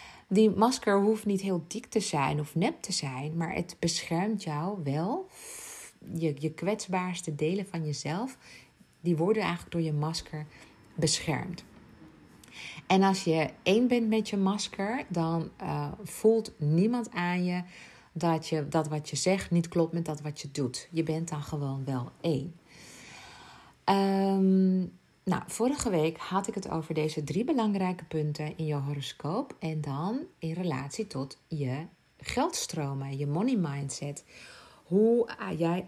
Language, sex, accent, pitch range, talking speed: Dutch, female, Dutch, 150-195 Hz, 150 wpm